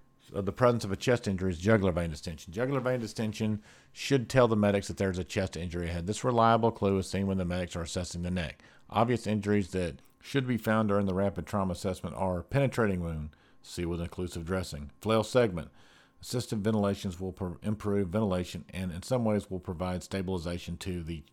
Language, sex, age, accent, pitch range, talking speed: English, male, 50-69, American, 90-110 Hz, 200 wpm